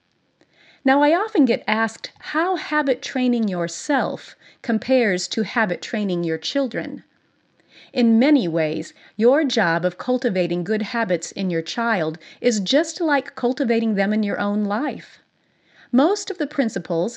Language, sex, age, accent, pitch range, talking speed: English, female, 40-59, American, 190-260 Hz, 135 wpm